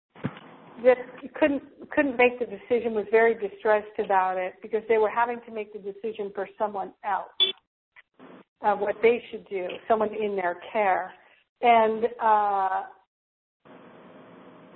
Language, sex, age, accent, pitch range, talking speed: English, female, 50-69, American, 205-250 Hz, 135 wpm